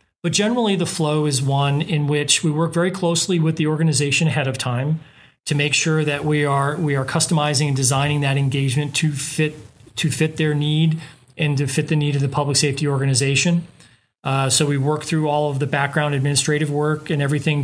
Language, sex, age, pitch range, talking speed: English, male, 40-59, 140-155 Hz, 205 wpm